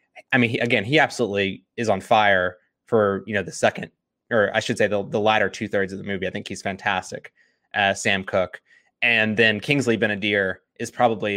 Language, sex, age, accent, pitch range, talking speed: English, male, 20-39, American, 100-120 Hz, 205 wpm